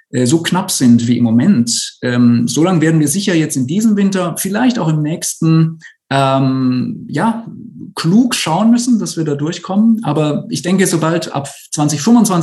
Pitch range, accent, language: 140-185 Hz, German, German